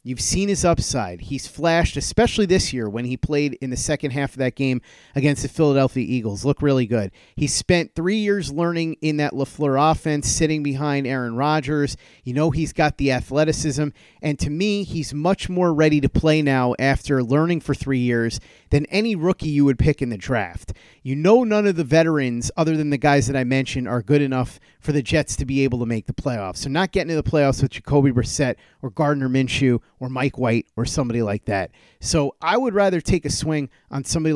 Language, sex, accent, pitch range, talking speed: English, male, American, 130-155 Hz, 215 wpm